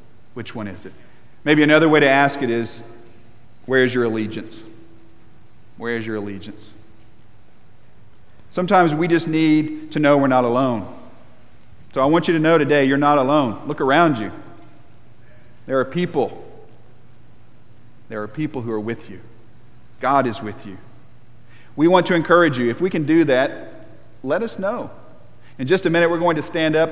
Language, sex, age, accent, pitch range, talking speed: English, male, 40-59, American, 120-170 Hz, 170 wpm